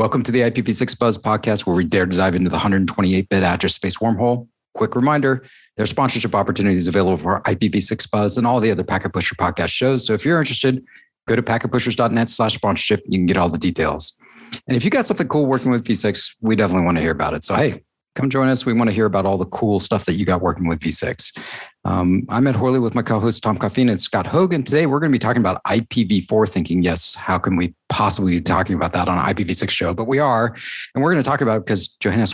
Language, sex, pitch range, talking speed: English, male, 95-125 Hz, 250 wpm